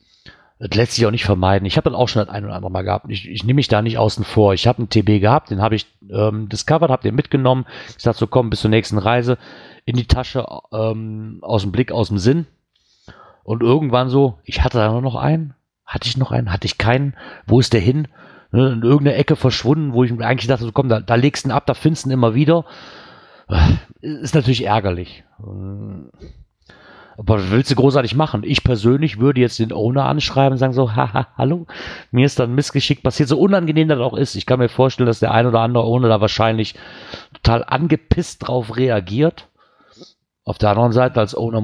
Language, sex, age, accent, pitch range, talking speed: German, male, 40-59, German, 110-135 Hz, 220 wpm